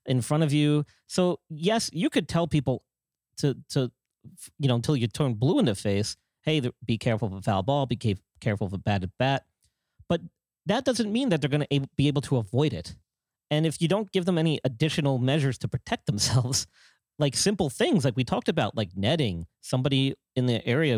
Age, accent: 40-59, American